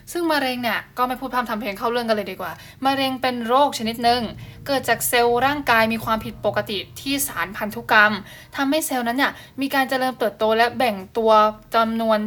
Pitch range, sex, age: 215-255 Hz, female, 10-29